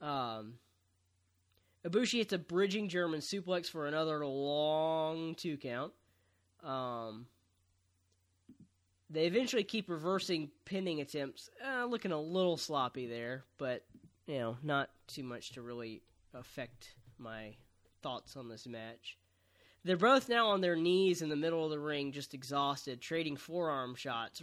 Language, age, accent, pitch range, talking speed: English, 20-39, American, 120-175 Hz, 140 wpm